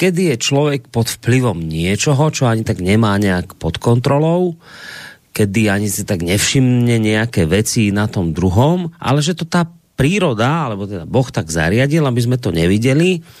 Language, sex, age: Slovak, male, 30-49